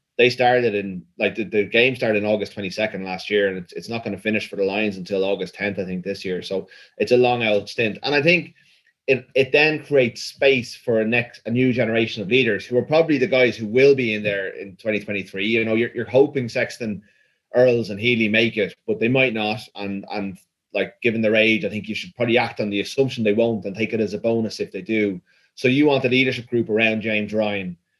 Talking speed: 240 wpm